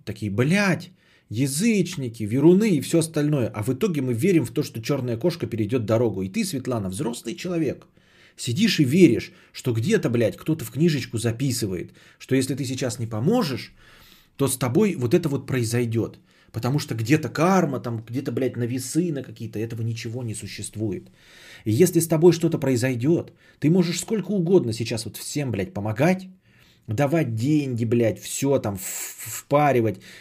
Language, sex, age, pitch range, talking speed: Bulgarian, male, 30-49, 115-160 Hz, 165 wpm